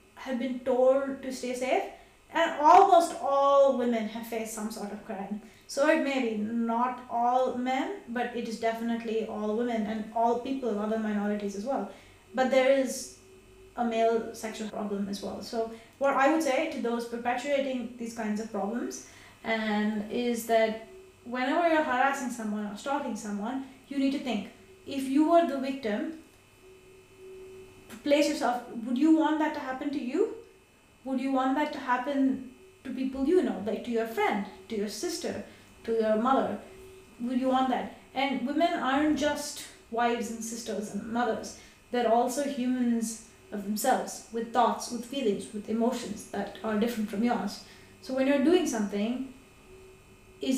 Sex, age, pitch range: female, 20-39, 225-280 Hz